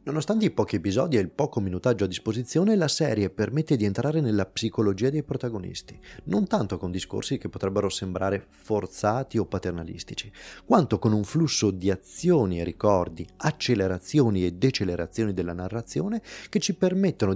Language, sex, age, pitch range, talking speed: Italian, male, 30-49, 95-140 Hz, 155 wpm